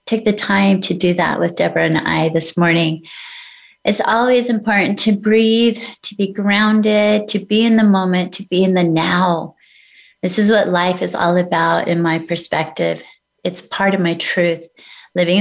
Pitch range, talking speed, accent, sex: 180-215 Hz, 180 wpm, American, female